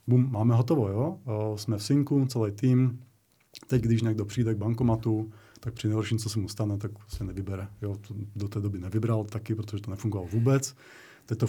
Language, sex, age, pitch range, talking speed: Czech, male, 30-49, 110-130 Hz, 190 wpm